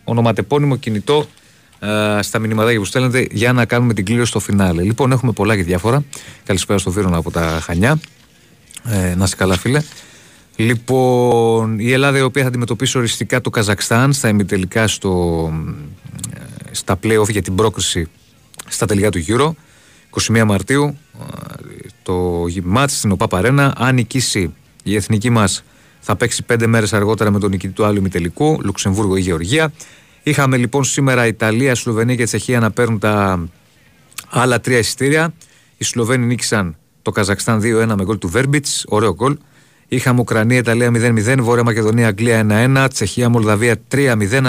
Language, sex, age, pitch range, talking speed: Greek, male, 30-49, 105-130 Hz, 155 wpm